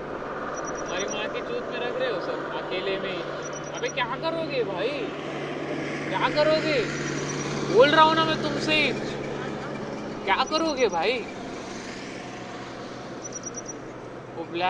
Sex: male